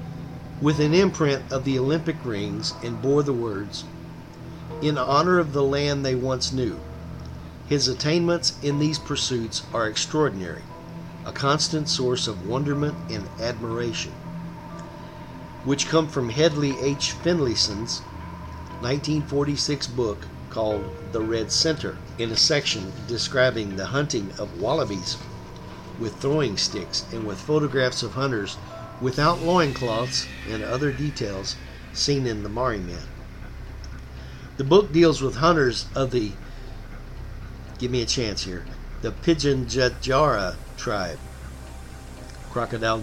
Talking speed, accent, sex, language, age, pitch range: 125 wpm, American, male, English, 50-69, 95-145 Hz